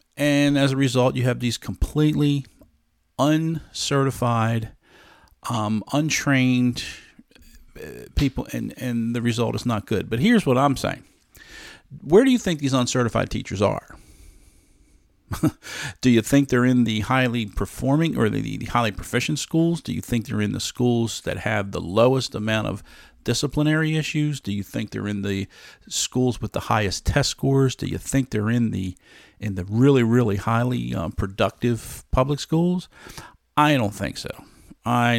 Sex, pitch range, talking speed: male, 100-130 Hz, 160 wpm